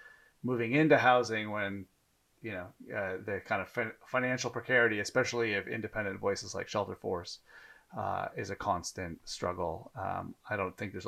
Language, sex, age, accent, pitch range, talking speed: English, male, 30-49, American, 100-150 Hz, 160 wpm